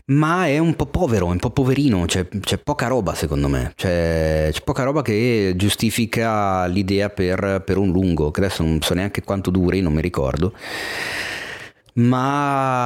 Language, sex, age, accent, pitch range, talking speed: Italian, male, 30-49, native, 85-110 Hz, 175 wpm